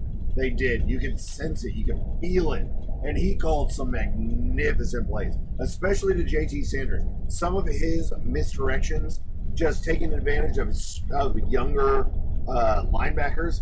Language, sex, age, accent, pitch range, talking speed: English, male, 30-49, American, 80-110 Hz, 140 wpm